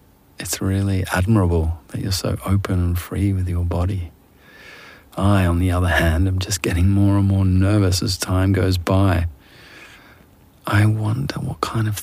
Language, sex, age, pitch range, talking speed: English, male, 50-69, 85-100 Hz, 165 wpm